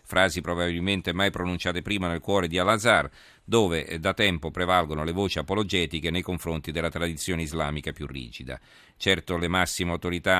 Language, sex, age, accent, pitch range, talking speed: Italian, male, 40-59, native, 80-95 Hz, 155 wpm